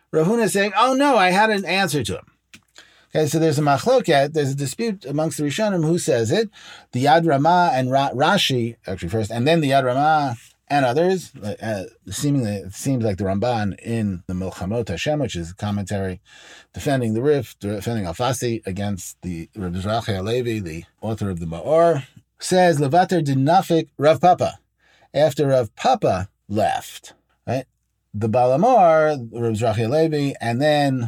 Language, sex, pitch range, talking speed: English, male, 110-160 Hz, 170 wpm